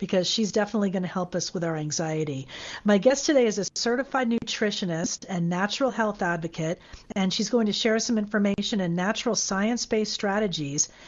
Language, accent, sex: English, American, female